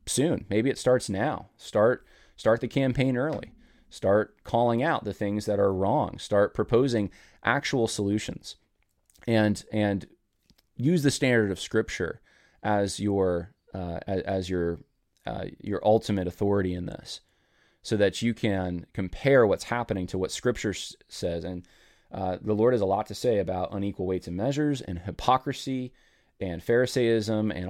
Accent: American